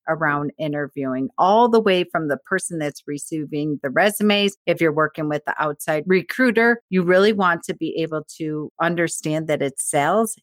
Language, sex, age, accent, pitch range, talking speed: English, female, 40-59, American, 155-195 Hz, 175 wpm